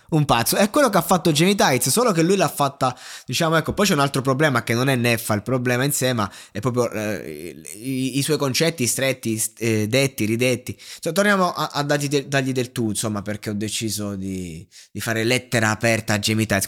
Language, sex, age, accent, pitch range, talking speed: Italian, male, 20-39, native, 115-165 Hz, 210 wpm